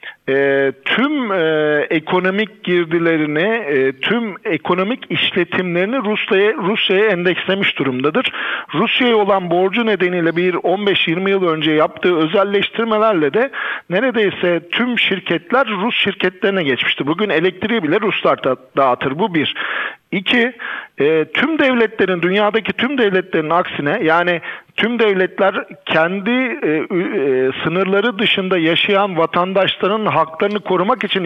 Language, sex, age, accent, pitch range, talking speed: Turkish, male, 50-69, native, 170-220 Hz, 105 wpm